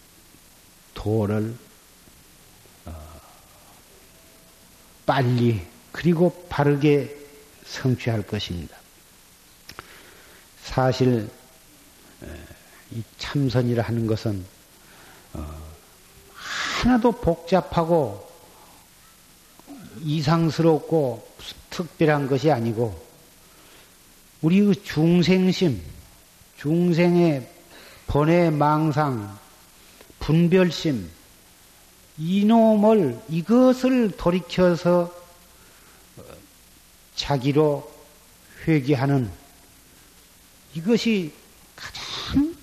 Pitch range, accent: 120-175 Hz, native